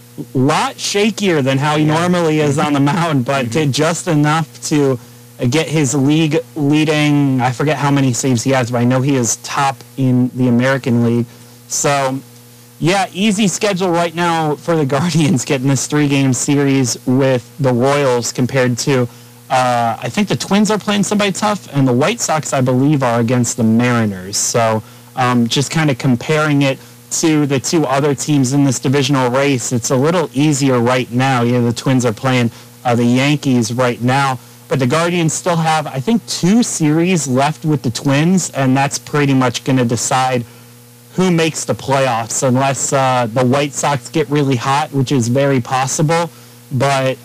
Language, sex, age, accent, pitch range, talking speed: English, male, 30-49, American, 125-155 Hz, 185 wpm